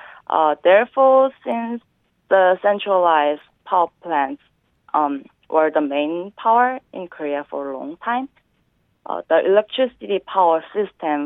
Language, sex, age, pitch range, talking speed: English, female, 30-49, 145-185 Hz, 125 wpm